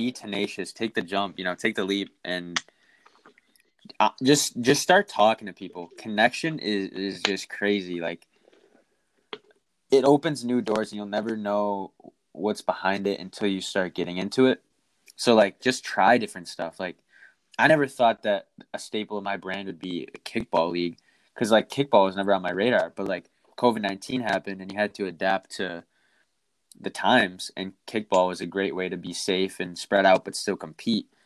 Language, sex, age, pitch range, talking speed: English, male, 20-39, 90-110 Hz, 180 wpm